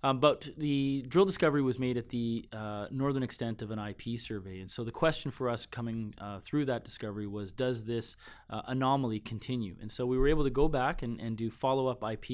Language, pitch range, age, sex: English, 110-130 Hz, 20-39, male